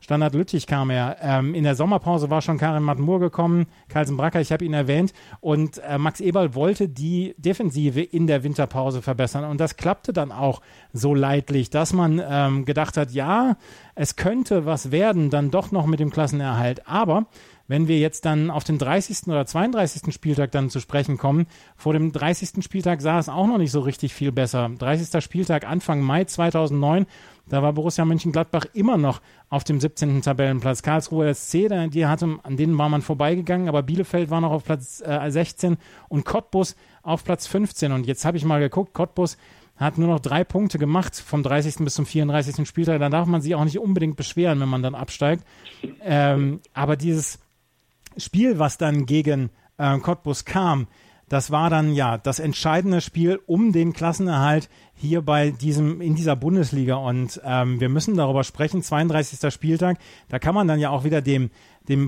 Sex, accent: male, German